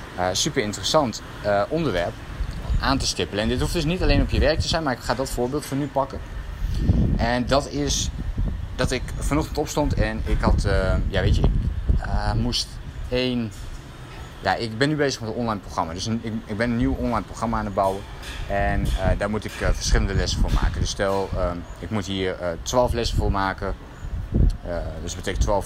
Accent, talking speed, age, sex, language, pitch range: Dutch, 215 wpm, 20-39, male, Dutch, 90-115 Hz